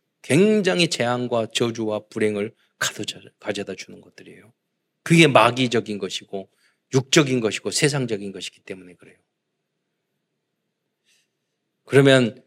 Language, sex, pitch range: Korean, male, 130-195 Hz